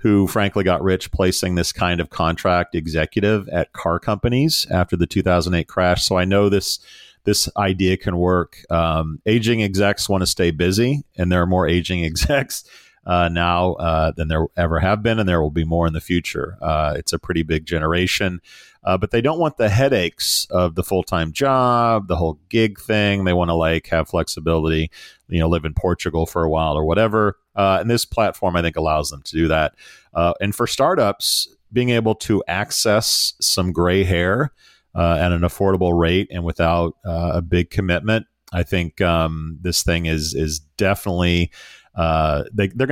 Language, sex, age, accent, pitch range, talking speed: English, male, 40-59, American, 80-100 Hz, 190 wpm